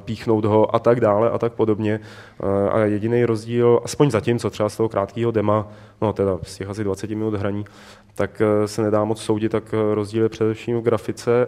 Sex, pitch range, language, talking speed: male, 105-115 Hz, Czech, 195 wpm